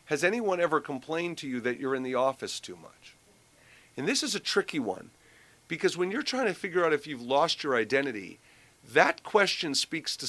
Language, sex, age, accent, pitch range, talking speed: English, male, 50-69, American, 135-185 Hz, 205 wpm